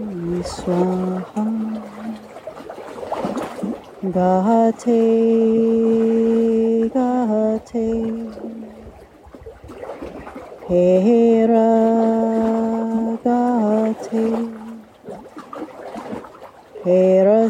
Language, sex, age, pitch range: English, female, 30-49, 190-230 Hz